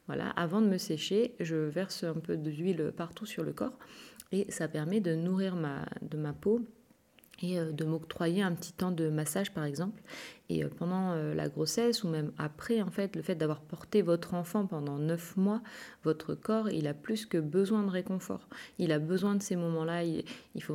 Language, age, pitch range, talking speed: French, 30-49, 160-195 Hz, 190 wpm